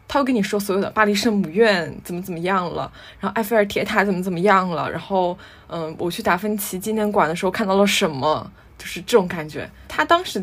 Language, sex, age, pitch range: Chinese, female, 20-39, 165-210 Hz